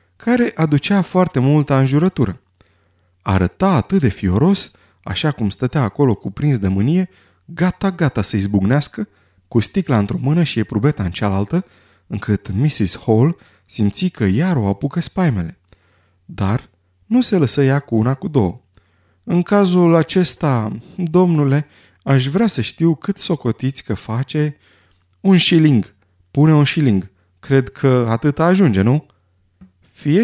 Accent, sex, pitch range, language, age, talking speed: native, male, 100-160 Hz, Romanian, 30-49, 135 wpm